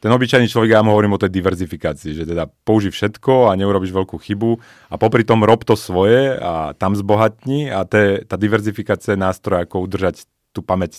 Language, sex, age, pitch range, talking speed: Slovak, male, 30-49, 90-110 Hz, 190 wpm